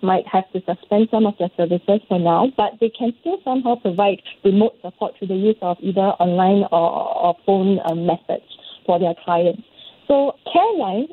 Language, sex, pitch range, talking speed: English, female, 180-235 Hz, 185 wpm